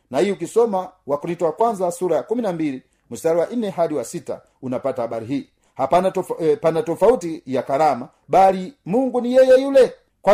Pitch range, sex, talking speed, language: 155-200 Hz, male, 165 wpm, Swahili